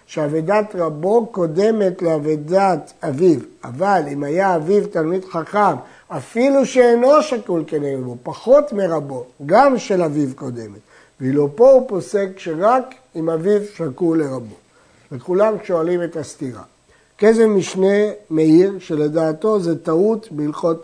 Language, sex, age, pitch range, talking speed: Hebrew, male, 60-79, 160-215 Hz, 120 wpm